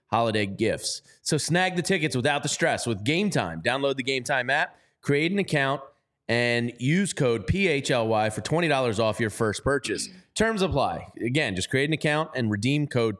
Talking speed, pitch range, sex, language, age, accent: 180 wpm, 115-150 Hz, male, English, 30-49, American